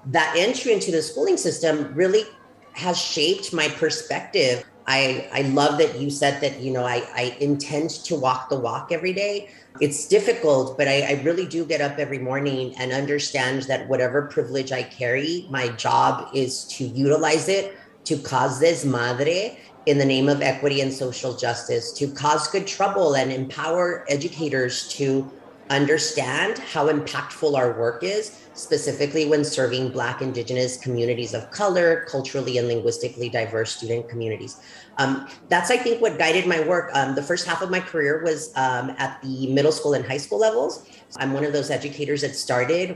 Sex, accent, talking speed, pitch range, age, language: female, American, 175 wpm, 130-155 Hz, 30-49, English